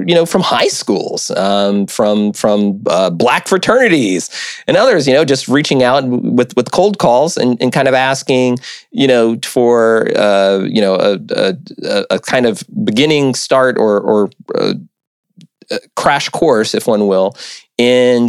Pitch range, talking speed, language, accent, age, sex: 100-130 Hz, 160 wpm, English, American, 30-49, male